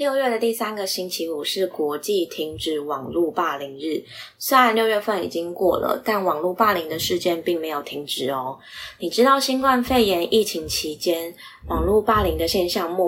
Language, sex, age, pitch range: Chinese, female, 20-39, 160-200 Hz